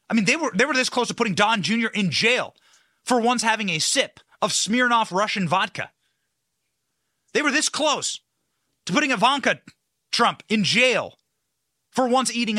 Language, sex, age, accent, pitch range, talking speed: English, male, 30-49, American, 160-225 Hz, 170 wpm